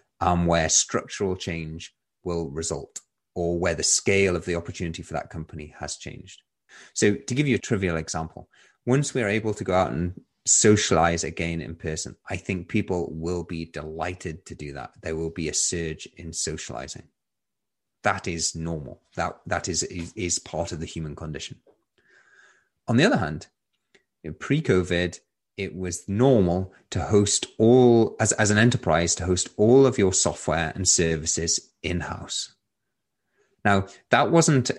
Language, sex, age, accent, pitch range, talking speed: English, male, 30-49, British, 85-100 Hz, 160 wpm